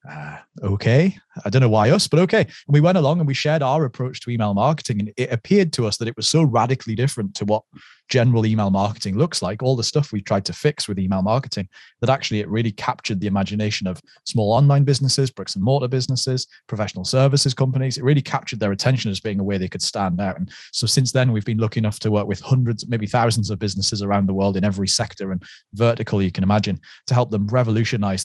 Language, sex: English, male